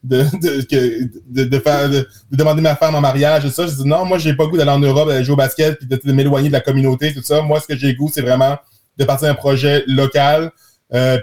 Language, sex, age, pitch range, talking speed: French, male, 20-39, 135-160 Hz, 290 wpm